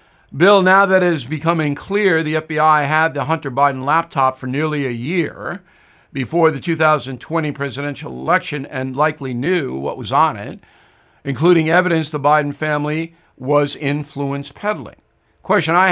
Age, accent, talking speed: 50-69, American, 150 wpm